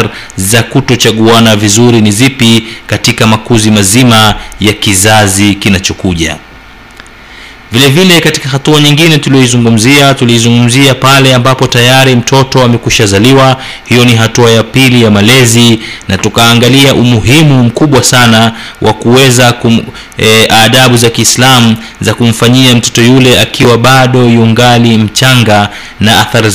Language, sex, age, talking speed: Swahili, male, 30-49, 115 wpm